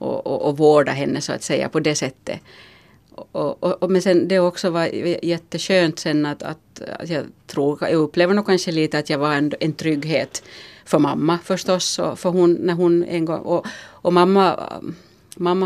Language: Finnish